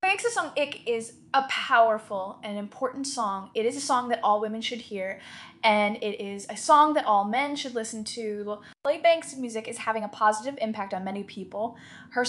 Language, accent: English, American